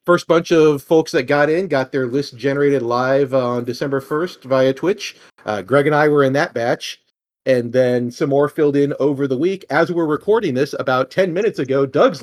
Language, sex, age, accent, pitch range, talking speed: English, male, 40-59, American, 125-155 Hz, 210 wpm